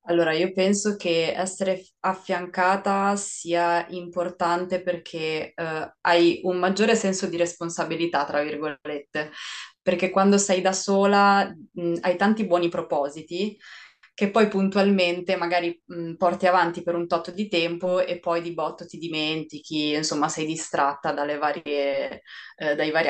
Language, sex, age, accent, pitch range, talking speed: Italian, female, 20-39, native, 155-180 Hz, 125 wpm